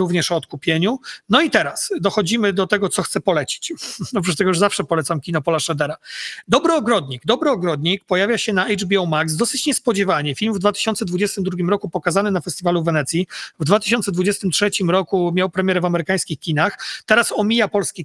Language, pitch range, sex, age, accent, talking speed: Polish, 170-205 Hz, male, 40-59, native, 175 wpm